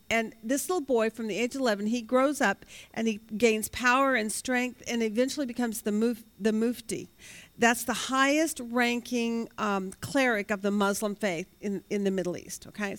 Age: 50-69